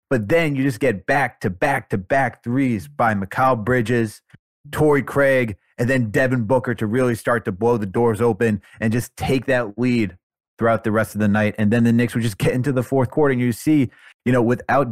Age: 30-49